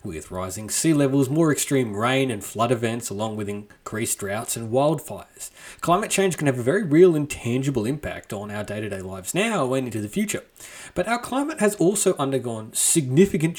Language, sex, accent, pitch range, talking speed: English, male, Australian, 105-150 Hz, 185 wpm